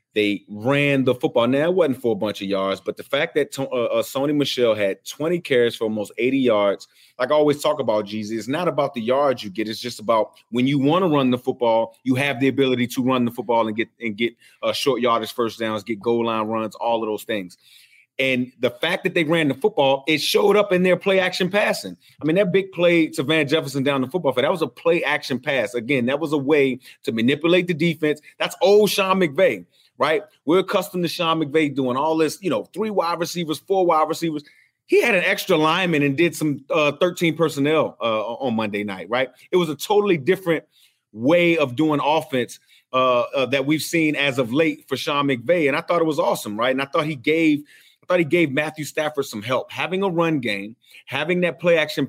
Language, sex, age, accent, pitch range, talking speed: English, male, 30-49, American, 125-170 Hz, 230 wpm